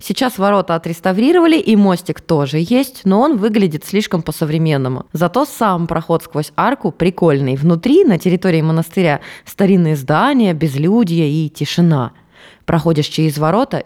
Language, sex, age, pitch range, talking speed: Russian, female, 20-39, 155-205 Hz, 130 wpm